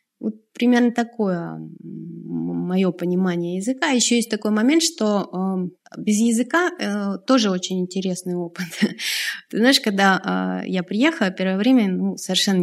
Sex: female